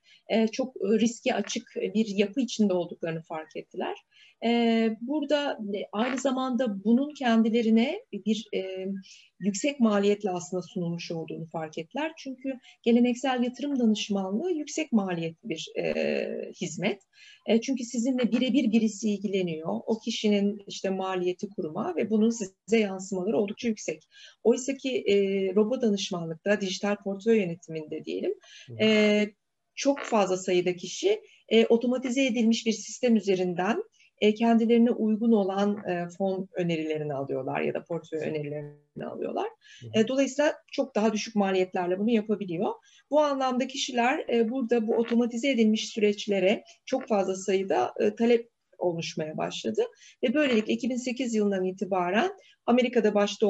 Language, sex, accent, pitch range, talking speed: Turkish, female, native, 195-255 Hz, 120 wpm